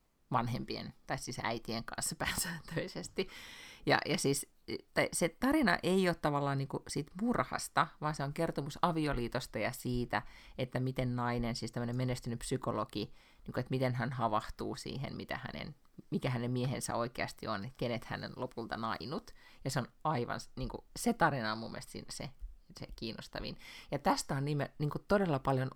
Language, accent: Finnish, native